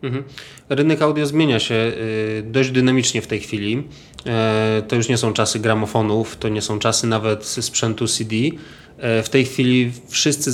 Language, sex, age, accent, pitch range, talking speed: Polish, male, 20-39, native, 110-125 Hz, 150 wpm